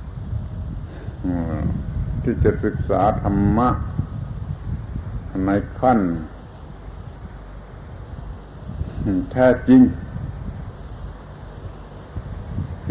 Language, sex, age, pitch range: Thai, male, 70-89, 90-115 Hz